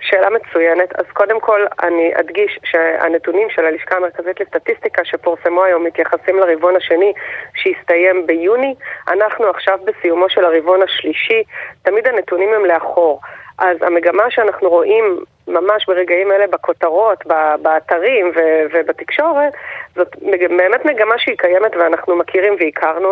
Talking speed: 120 wpm